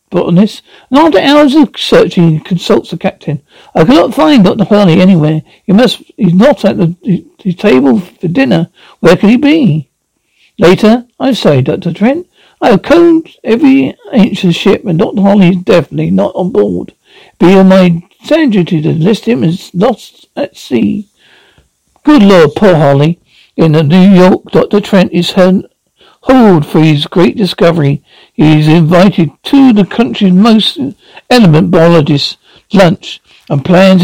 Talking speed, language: 155 wpm, English